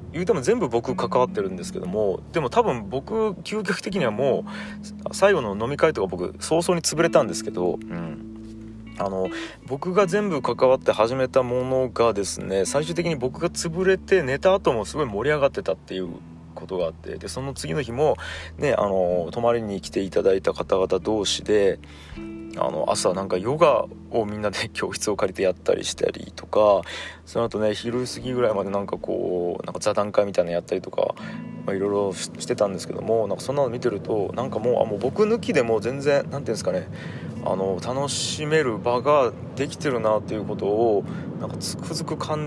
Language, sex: Japanese, male